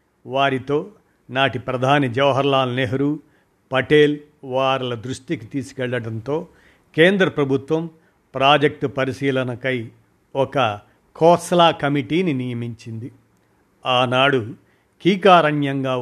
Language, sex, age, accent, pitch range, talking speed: Telugu, male, 50-69, native, 130-150 Hz, 70 wpm